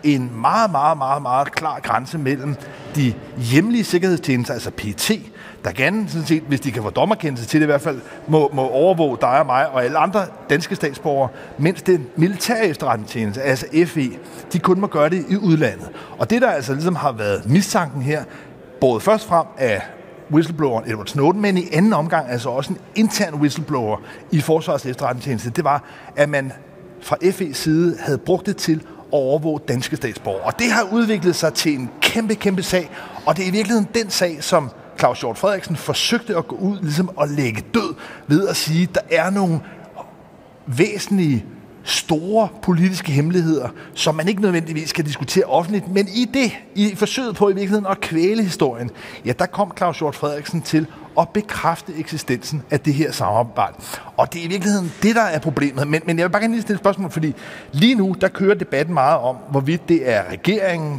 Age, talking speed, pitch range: 40-59, 190 wpm, 140-190 Hz